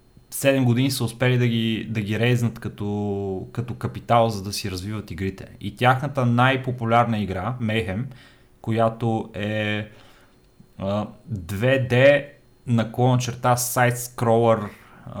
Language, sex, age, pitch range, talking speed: Bulgarian, male, 30-49, 110-125 Hz, 115 wpm